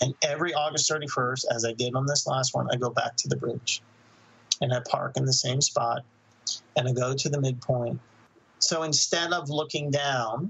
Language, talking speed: English, 200 wpm